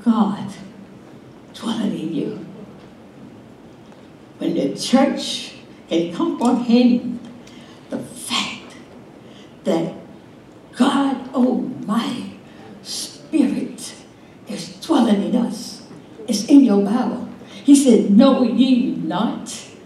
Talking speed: 90 wpm